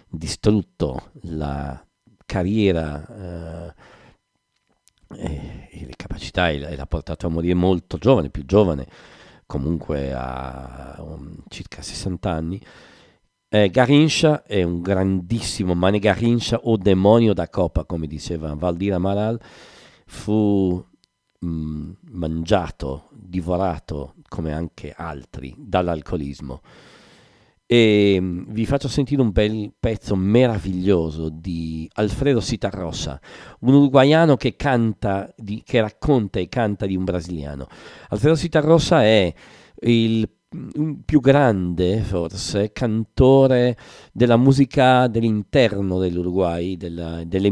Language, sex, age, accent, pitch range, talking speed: English, male, 50-69, Italian, 85-115 Hz, 100 wpm